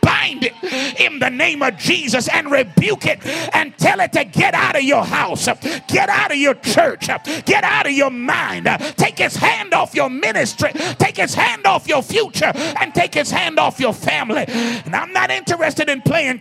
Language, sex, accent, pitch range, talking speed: English, male, American, 205-270 Hz, 200 wpm